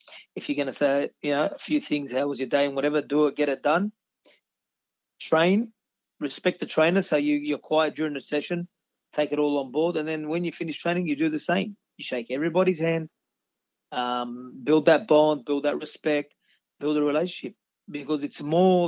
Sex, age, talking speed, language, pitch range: male, 30-49, 200 wpm, English, 140-170 Hz